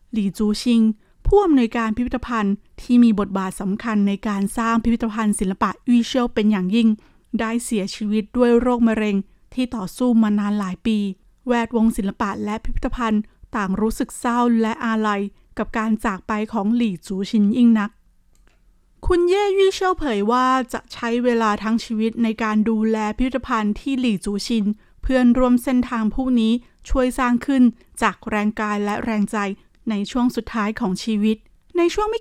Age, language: 20-39, Thai